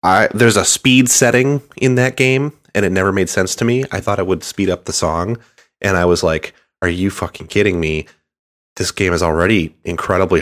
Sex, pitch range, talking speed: male, 80-100 Hz, 205 wpm